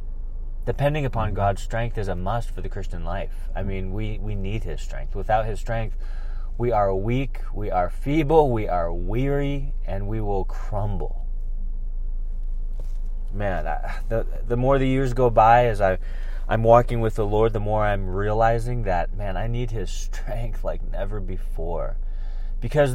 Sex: male